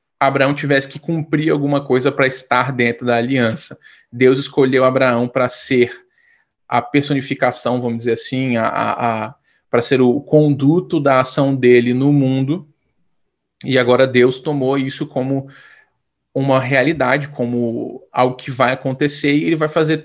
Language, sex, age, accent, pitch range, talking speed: Portuguese, male, 20-39, Brazilian, 125-145 Hz, 150 wpm